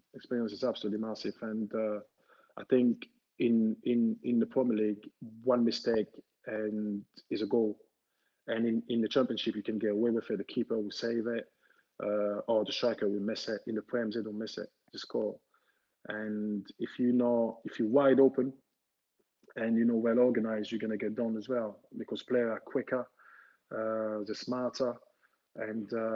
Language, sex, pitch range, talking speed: English, male, 110-130 Hz, 180 wpm